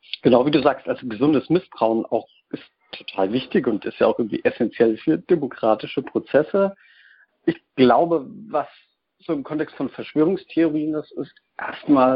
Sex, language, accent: male, German, German